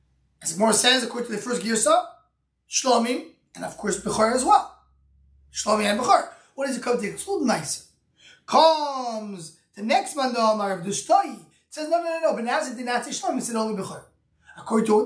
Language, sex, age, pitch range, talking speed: English, male, 20-39, 220-305 Hz, 205 wpm